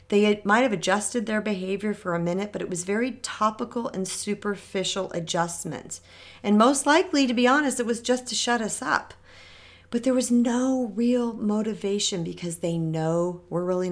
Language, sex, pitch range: English, female, 175-240 Hz